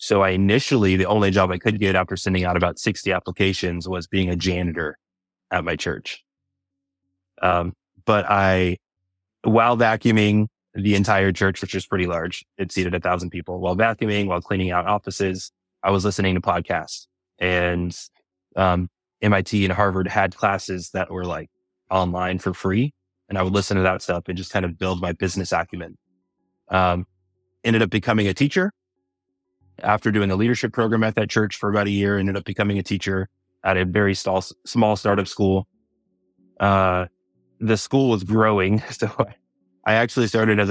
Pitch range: 90-105 Hz